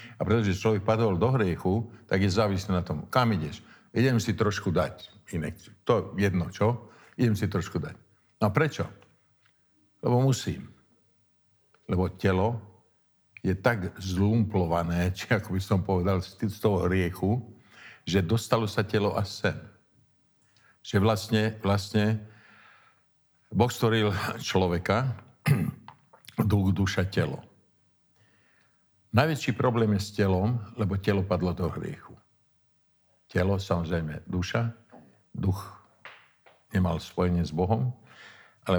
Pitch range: 90-110 Hz